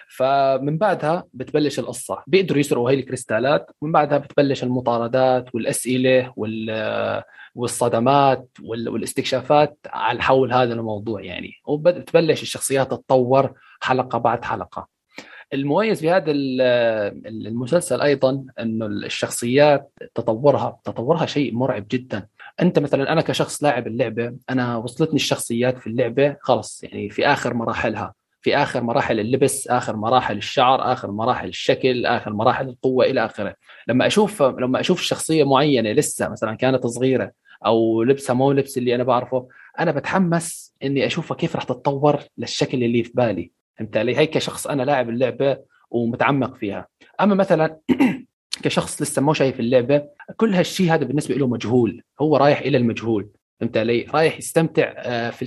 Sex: male